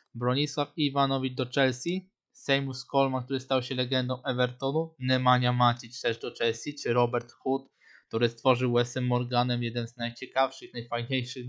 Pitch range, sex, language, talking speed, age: 125-150 Hz, male, Polish, 140 wpm, 20-39